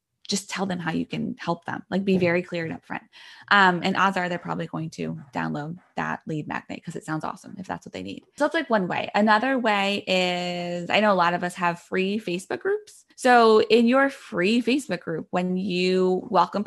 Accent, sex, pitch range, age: American, female, 175-220 Hz, 20-39